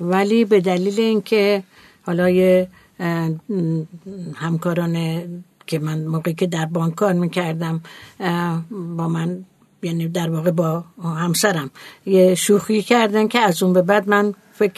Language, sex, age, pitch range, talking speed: Persian, female, 60-79, 175-215 Hz, 130 wpm